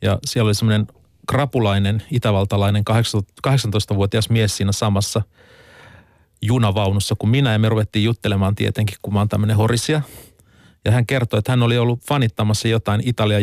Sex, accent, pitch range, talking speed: male, native, 105-125 Hz, 145 wpm